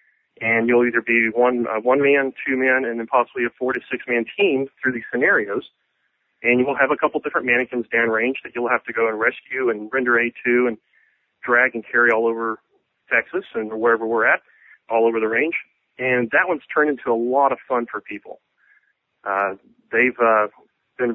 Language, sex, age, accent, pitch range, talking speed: English, male, 40-59, American, 115-140 Hz, 200 wpm